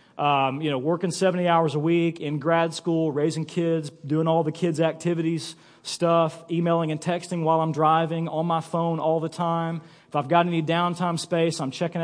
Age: 40-59